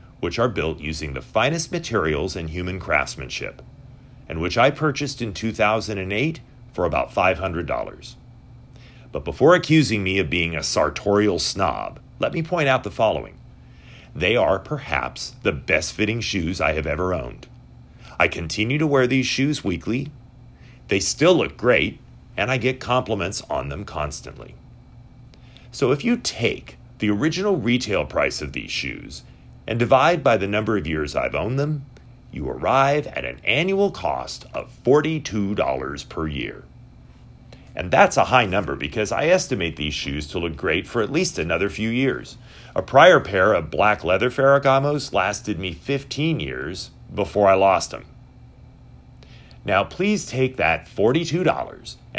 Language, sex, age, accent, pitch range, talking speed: English, male, 40-59, American, 85-135 Hz, 155 wpm